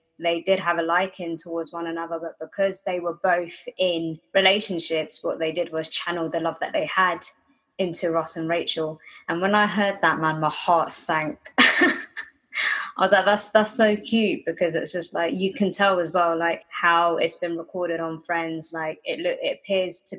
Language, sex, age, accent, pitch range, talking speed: English, female, 20-39, British, 165-190 Hz, 200 wpm